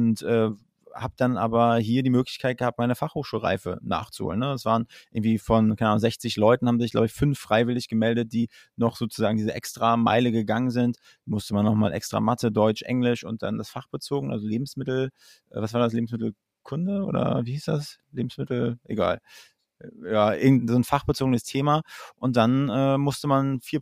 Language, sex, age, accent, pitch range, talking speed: German, male, 20-39, German, 110-130 Hz, 180 wpm